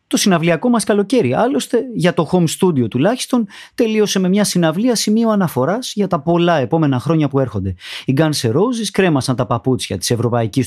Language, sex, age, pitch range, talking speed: Greek, male, 30-49, 135-220 Hz, 175 wpm